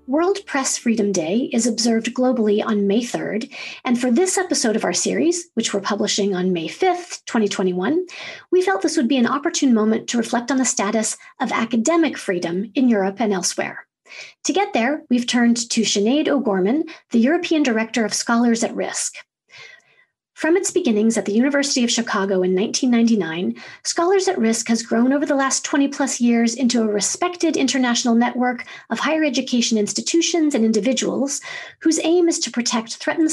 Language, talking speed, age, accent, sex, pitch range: English, 175 wpm, 40-59, American, female, 225-295 Hz